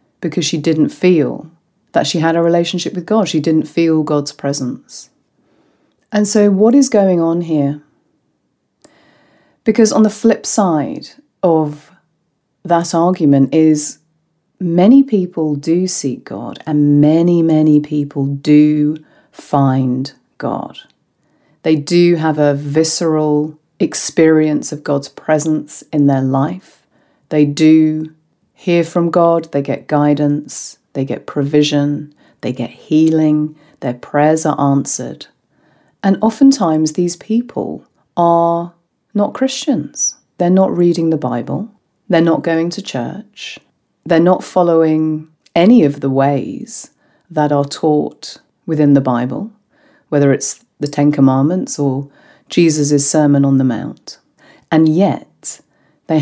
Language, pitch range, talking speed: English, 145-175 Hz, 125 wpm